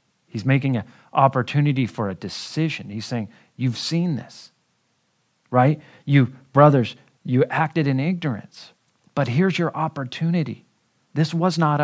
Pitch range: 120-155 Hz